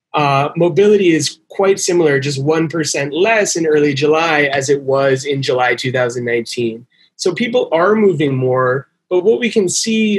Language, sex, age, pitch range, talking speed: English, male, 20-39, 135-170 Hz, 160 wpm